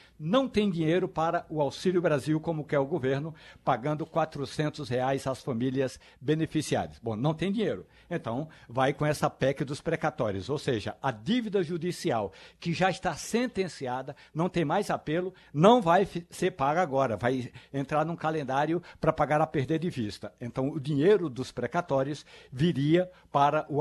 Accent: Brazilian